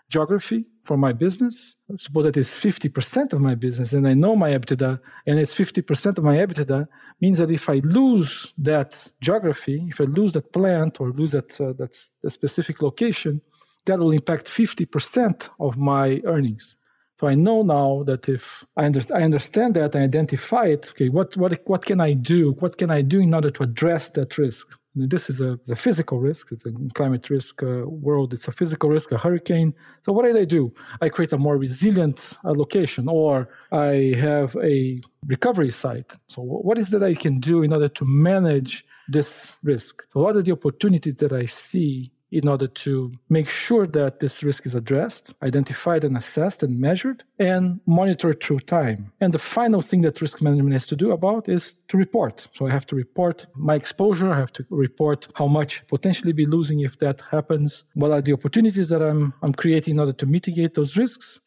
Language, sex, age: English, male, 50-69